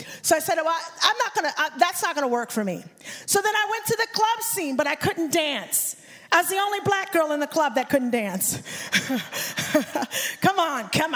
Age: 40-59